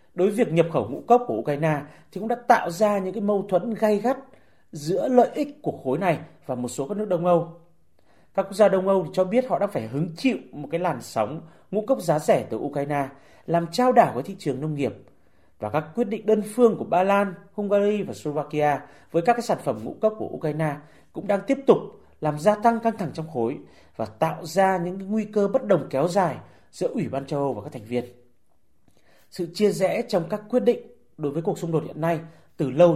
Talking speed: 240 wpm